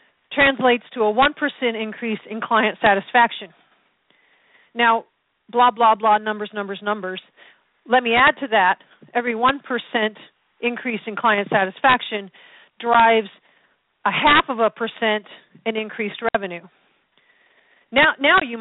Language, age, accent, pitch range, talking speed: English, 40-59, American, 210-260 Hz, 125 wpm